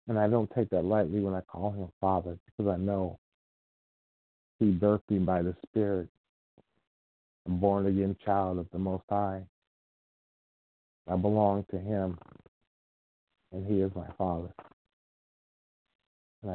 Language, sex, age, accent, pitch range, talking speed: English, male, 50-69, American, 90-110 Hz, 140 wpm